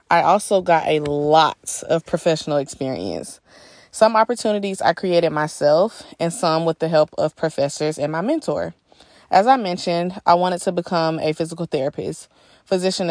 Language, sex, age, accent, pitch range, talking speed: English, female, 20-39, American, 150-180 Hz, 155 wpm